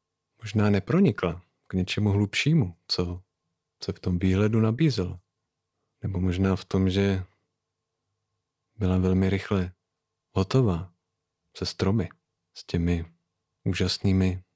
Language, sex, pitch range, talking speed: Czech, male, 95-115 Hz, 105 wpm